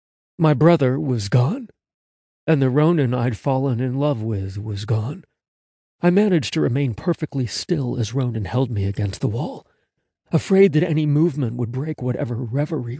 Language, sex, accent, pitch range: English, male, American, 115-150 Hz